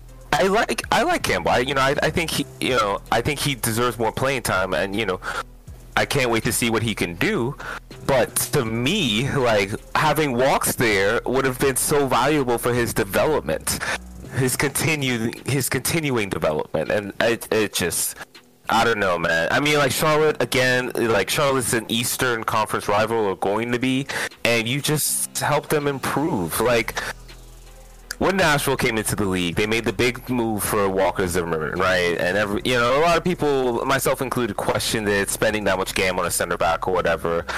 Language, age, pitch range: English, 30-49, 110-150 Hz